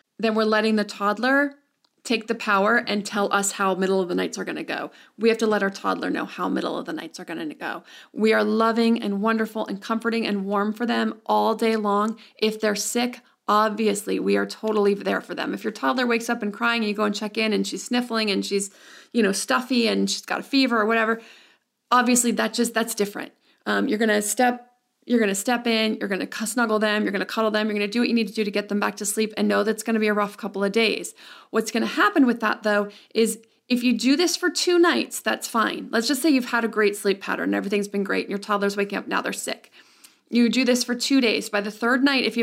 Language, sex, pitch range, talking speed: English, female, 205-235 Hz, 265 wpm